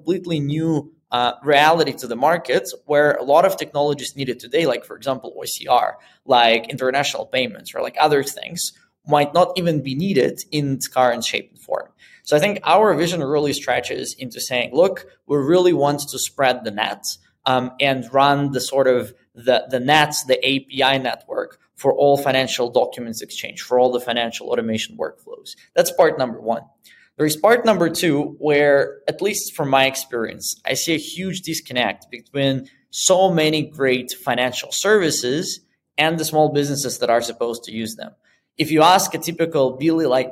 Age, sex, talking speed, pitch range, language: 20-39, male, 175 wpm, 130-160 Hz, English